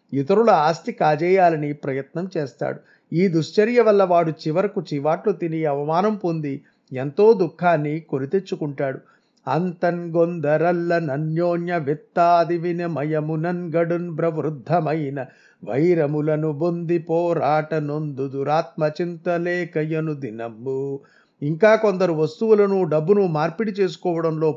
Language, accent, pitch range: Telugu, native, 150-175 Hz